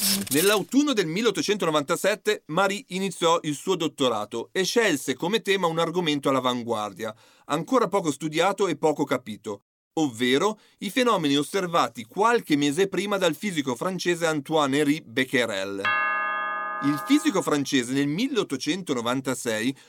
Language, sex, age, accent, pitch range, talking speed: Italian, male, 40-59, native, 145-230 Hz, 120 wpm